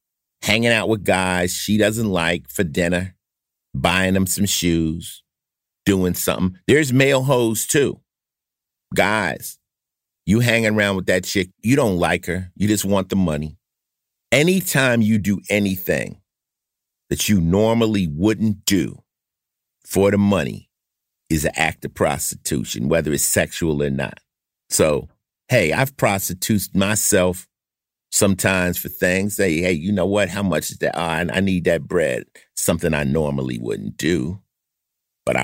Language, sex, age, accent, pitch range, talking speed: English, male, 50-69, American, 90-110 Hz, 150 wpm